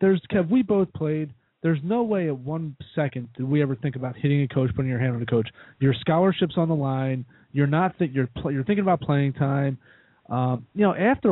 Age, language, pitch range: 30-49, English, 135-180 Hz